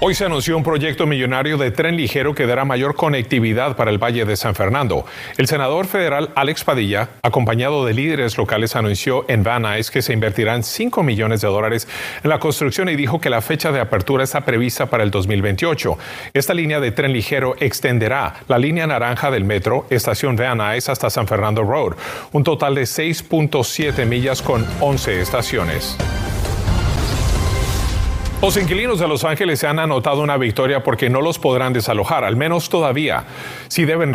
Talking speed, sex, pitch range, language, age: 175 wpm, male, 115-145 Hz, Spanish, 40-59